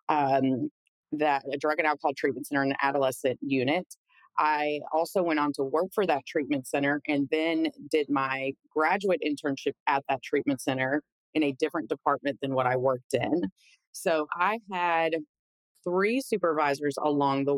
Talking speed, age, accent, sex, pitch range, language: 165 wpm, 30-49, American, female, 145-165 Hz, English